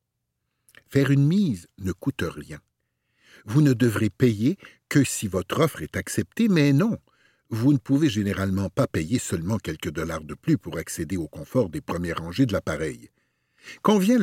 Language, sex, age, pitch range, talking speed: French, male, 60-79, 95-160 Hz, 165 wpm